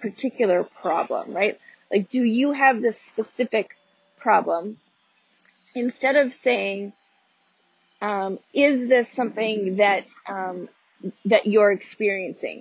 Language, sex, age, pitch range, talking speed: English, female, 30-49, 210-275 Hz, 105 wpm